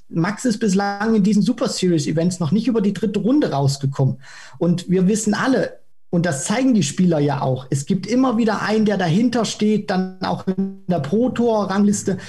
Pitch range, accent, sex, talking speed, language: 150-200 Hz, German, male, 190 wpm, German